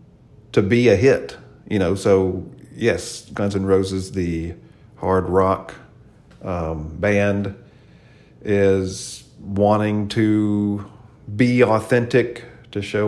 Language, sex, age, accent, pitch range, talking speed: English, male, 40-59, American, 95-115 Hz, 105 wpm